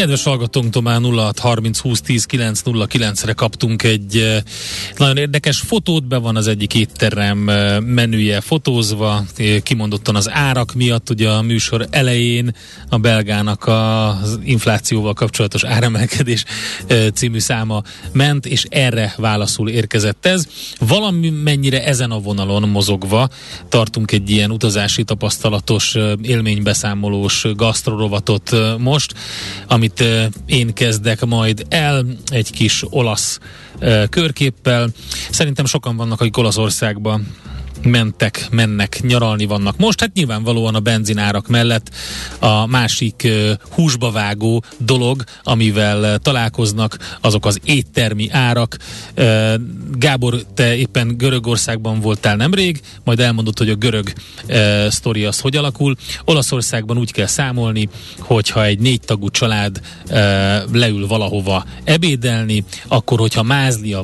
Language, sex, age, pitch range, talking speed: Hungarian, male, 30-49, 105-125 Hz, 115 wpm